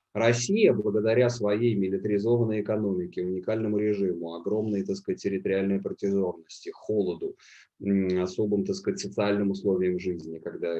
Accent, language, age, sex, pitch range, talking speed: native, Russian, 30-49, male, 95-125 Hz, 90 wpm